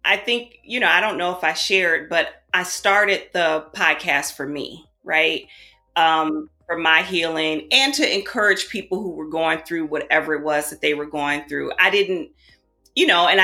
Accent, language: American, English